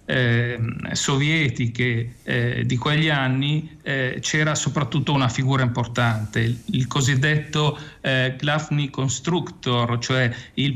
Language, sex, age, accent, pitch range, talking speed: Italian, male, 40-59, native, 130-155 Hz, 110 wpm